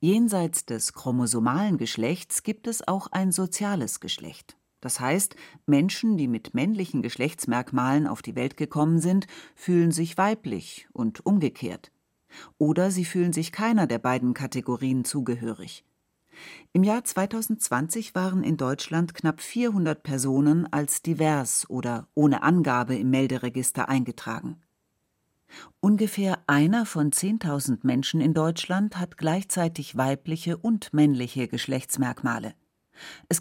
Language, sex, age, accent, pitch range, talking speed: German, female, 40-59, German, 135-185 Hz, 120 wpm